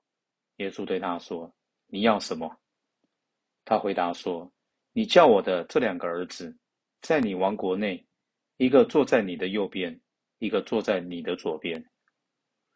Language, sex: Chinese, male